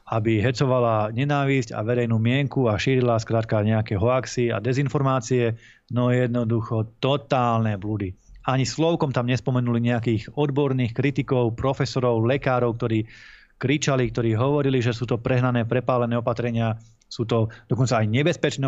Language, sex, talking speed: Slovak, male, 130 wpm